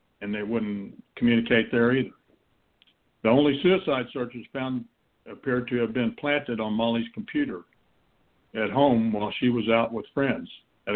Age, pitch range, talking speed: 60-79, 115-135 Hz, 155 wpm